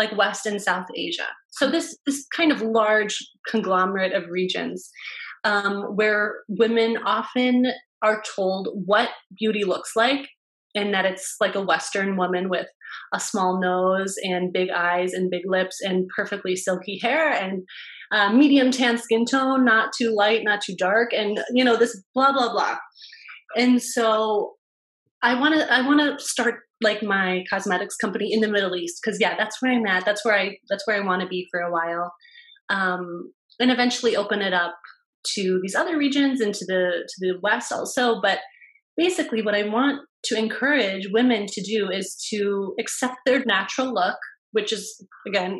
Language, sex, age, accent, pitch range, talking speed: English, female, 20-39, American, 190-240 Hz, 180 wpm